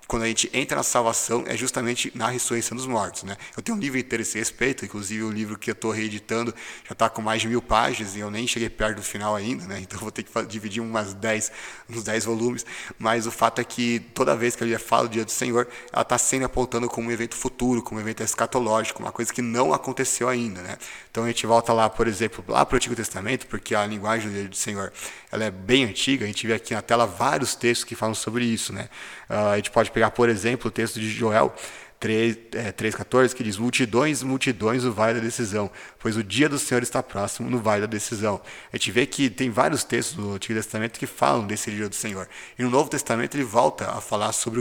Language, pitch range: Portuguese, 110-120 Hz